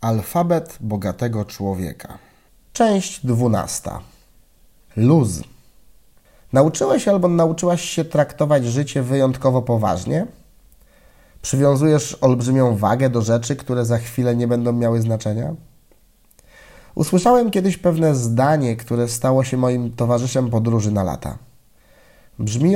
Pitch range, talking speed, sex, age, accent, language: 120-155 Hz, 105 wpm, male, 30-49, native, Polish